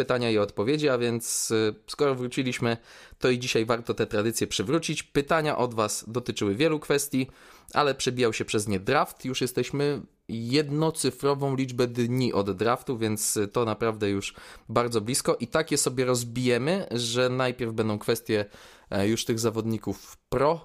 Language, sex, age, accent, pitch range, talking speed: Polish, male, 20-39, native, 110-135 Hz, 150 wpm